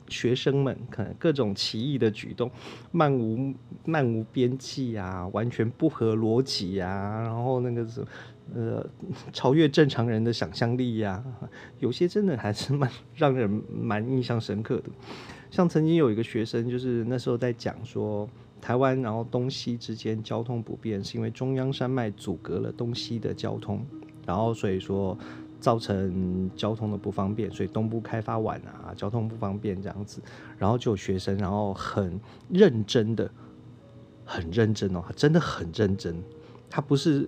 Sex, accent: male, native